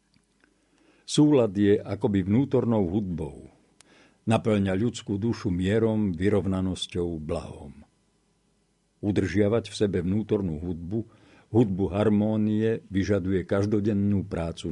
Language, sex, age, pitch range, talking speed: Slovak, male, 50-69, 95-120 Hz, 85 wpm